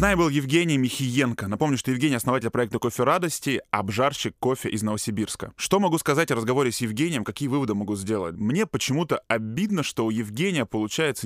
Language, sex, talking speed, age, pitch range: Russian, male, 175 wpm, 20-39, 110-140 Hz